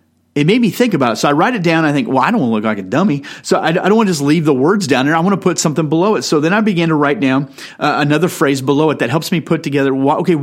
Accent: American